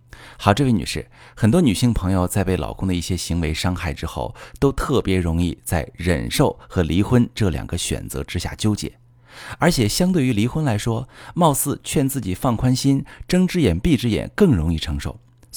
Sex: male